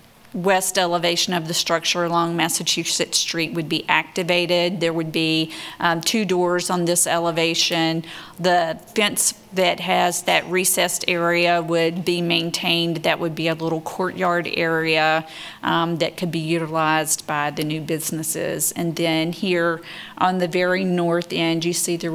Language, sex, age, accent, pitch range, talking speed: English, female, 40-59, American, 165-180 Hz, 155 wpm